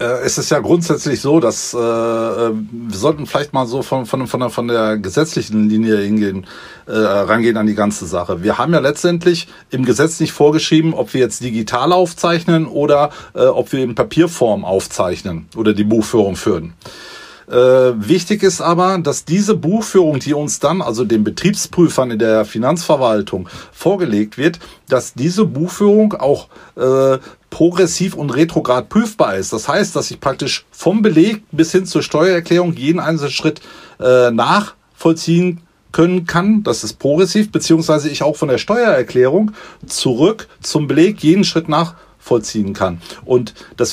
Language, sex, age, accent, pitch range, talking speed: German, male, 40-59, German, 125-175 Hz, 160 wpm